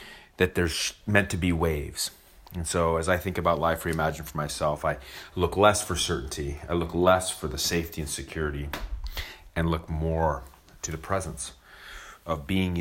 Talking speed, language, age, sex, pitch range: 175 wpm, English, 30-49, male, 70-90 Hz